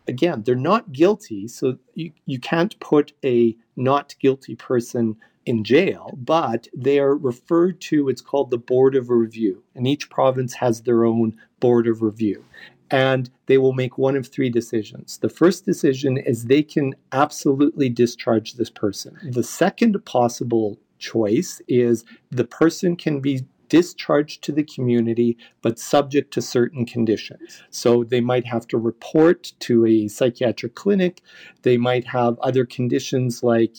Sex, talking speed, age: male, 155 wpm, 50-69